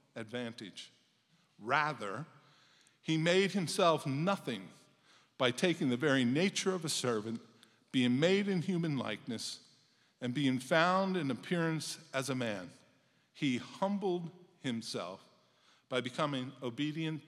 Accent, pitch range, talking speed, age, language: American, 130-175 Hz, 115 wpm, 50-69, English